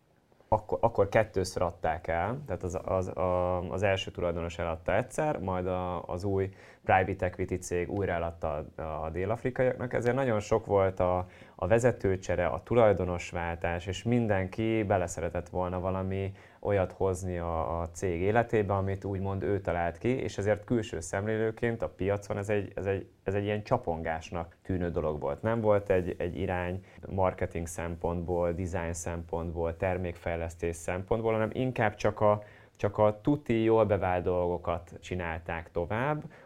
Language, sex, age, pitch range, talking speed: Hungarian, male, 20-39, 90-105 Hz, 145 wpm